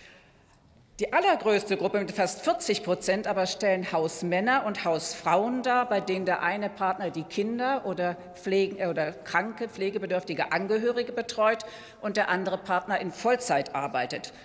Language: German